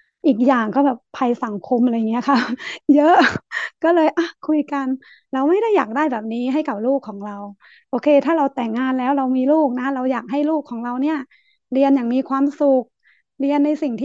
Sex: female